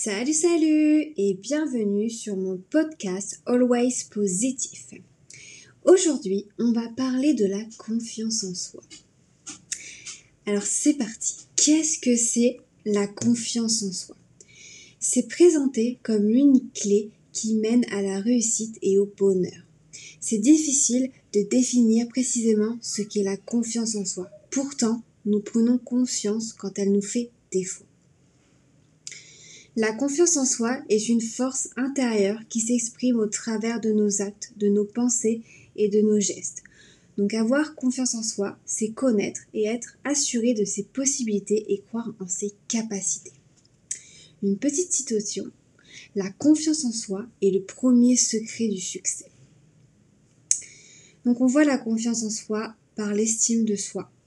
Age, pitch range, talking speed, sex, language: 20-39, 200-245 Hz, 140 wpm, female, French